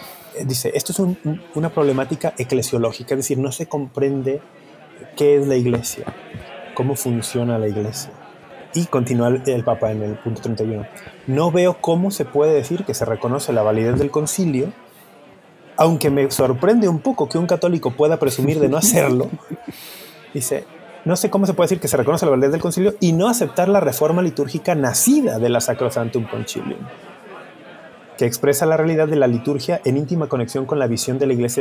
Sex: male